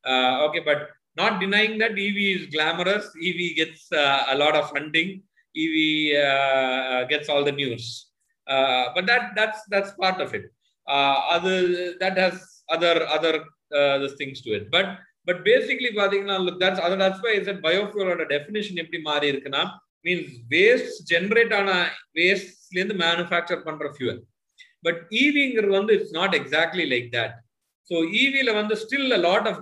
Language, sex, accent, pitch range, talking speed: Tamil, male, native, 145-200 Hz, 175 wpm